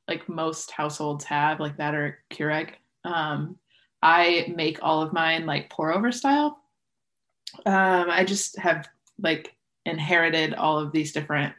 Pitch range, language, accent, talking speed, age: 155-185 Hz, English, American, 145 wpm, 20-39